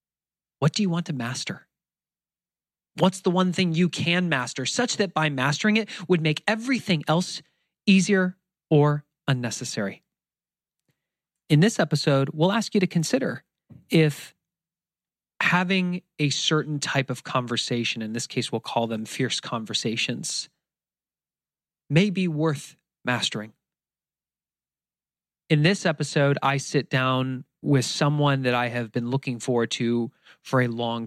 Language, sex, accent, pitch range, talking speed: English, male, American, 125-165 Hz, 135 wpm